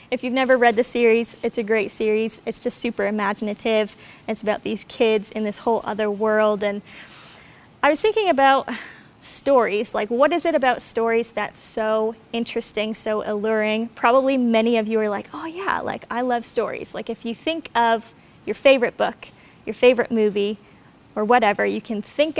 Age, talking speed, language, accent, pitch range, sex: 20-39, 180 wpm, English, American, 215-250 Hz, female